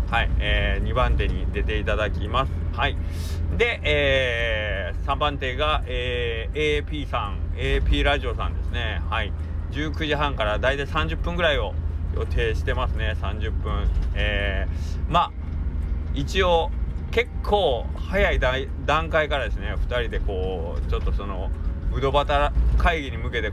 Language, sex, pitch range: Japanese, male, 75-105 Hz